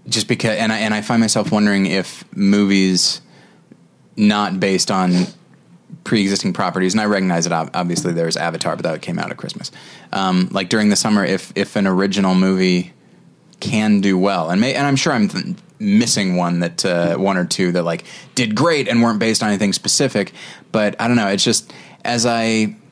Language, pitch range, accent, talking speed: English, 95-115 Hz, American, 195 wpm